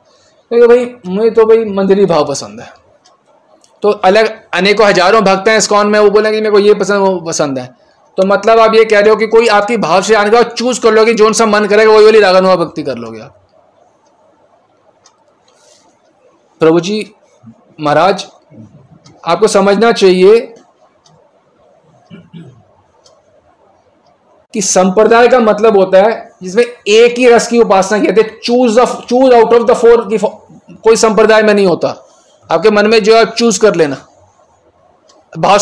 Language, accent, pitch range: Hindi, native, 200-240 Hz